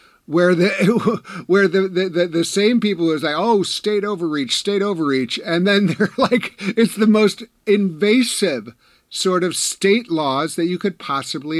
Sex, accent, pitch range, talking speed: male, American, 155-205 Hz, 160 wpm